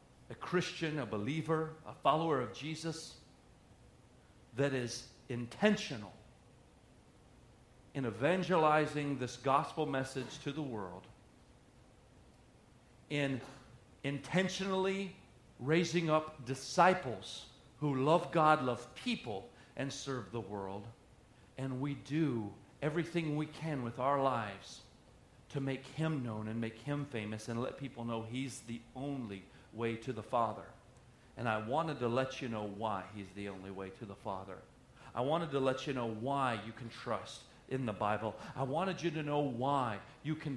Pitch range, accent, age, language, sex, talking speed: 120-150 Hz, American, 40-59, English, male, 145 wpm